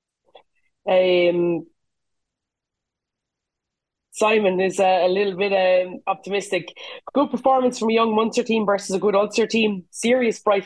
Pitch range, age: 185-220 Hz, 20-39